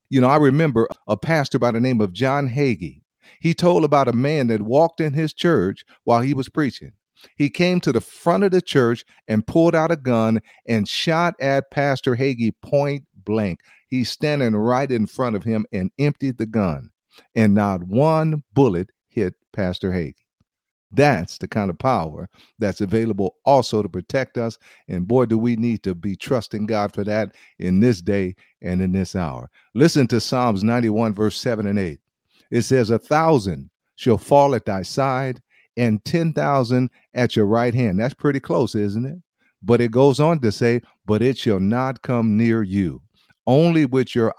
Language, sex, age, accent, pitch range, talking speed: English, male, 50-69, American, 100-135 Hz, 185 wpm